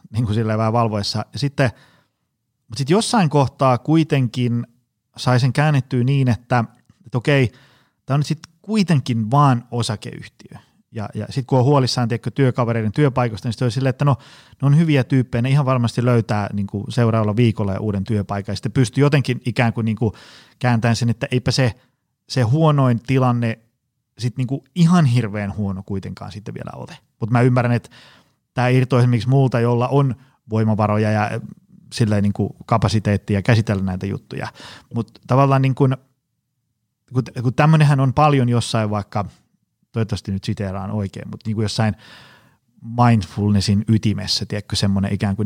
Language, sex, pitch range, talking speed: Finnish, male, 110-135 Hz, 150 wpm